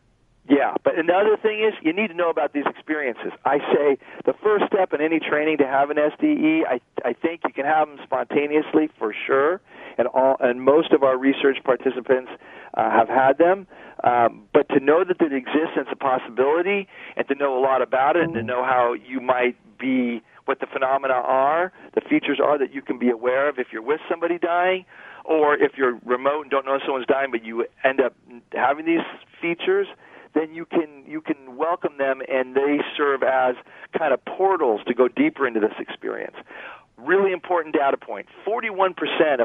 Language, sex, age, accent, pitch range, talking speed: English, male, 40-59, American, 130-175 Hz, 200 wpm